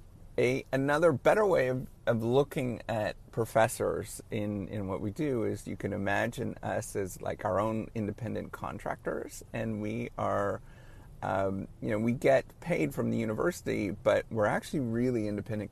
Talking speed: 155 wpm